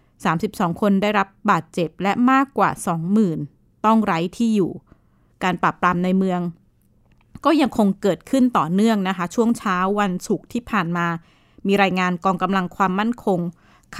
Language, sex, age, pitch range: Thai, female, 20-39, 180-225 Hz